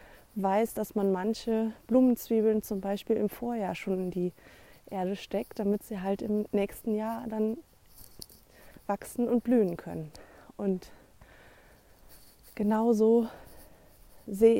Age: 20-39